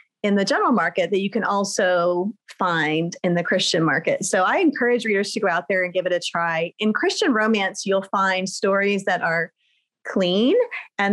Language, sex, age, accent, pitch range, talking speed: English, female, 30-49, American, 190-240 Hz, 195 wpm